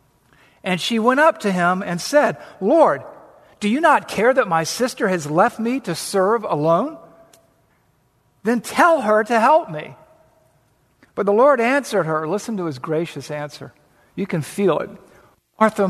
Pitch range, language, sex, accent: 150-215 Hz, English, male, American